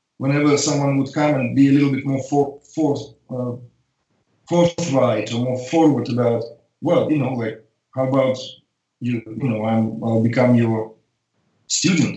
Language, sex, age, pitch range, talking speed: English, male, 40-59, 120-145 Hz, 160 wpm